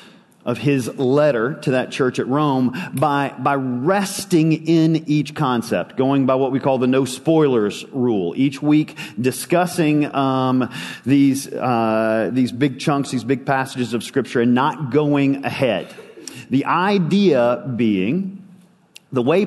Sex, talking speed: male, 140 wpm